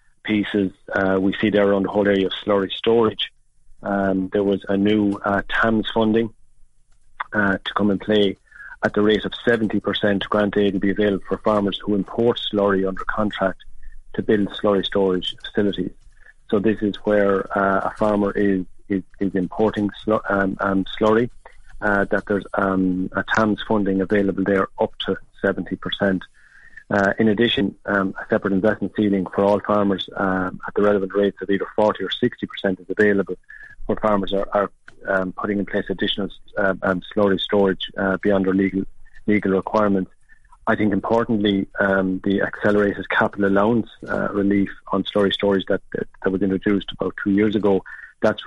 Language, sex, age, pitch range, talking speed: English, male, 40-59, 95-105 Hz, 170 wpm